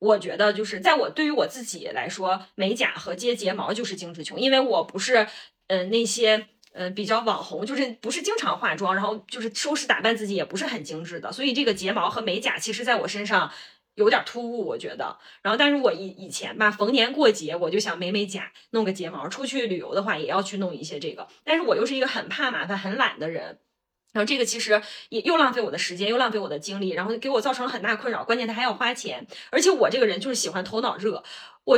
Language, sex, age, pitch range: Chinese, female, 20-39, 200-270 Hz